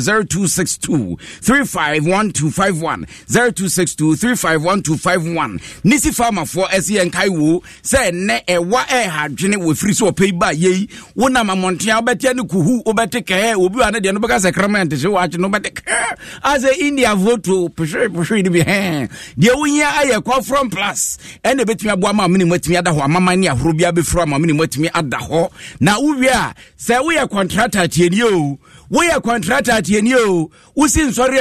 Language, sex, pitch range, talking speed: English, male, 175-230 Hz, 140 wpm